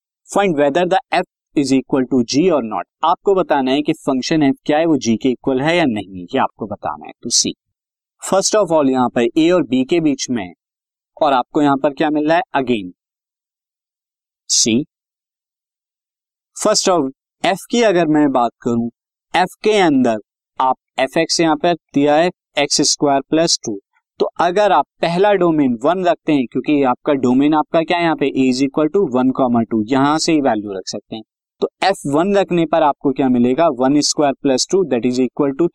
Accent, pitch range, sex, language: native, 130-180 Hz, male, Hindi